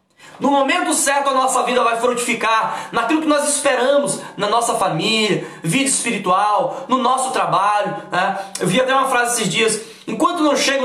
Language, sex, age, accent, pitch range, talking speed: Portuguese, male, 20-39, Brazilian, 215-280 Hz, 170 wpm